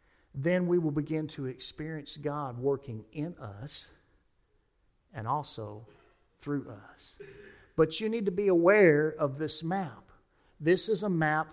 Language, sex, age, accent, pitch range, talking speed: English, male, 50-69, American, 135-170 Hz, 140 wpm